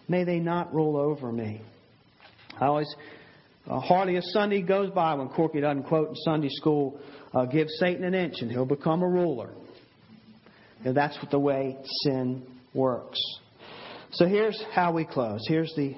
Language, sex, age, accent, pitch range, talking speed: English, male, 50-69, American, 145-190 Hz, 165 wpm